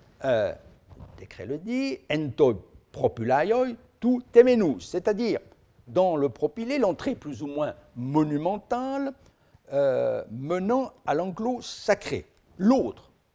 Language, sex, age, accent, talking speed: French, male, 60-79, French, 105 wpm